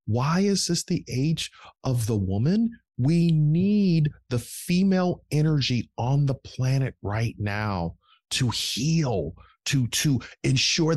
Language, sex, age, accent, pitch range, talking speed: English, male, 40-59, American, 125-185 Hz, 125 wpm